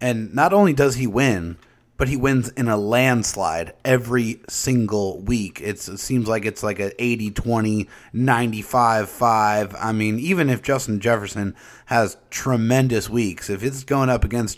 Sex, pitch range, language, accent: male, 105-125 Hz, English, American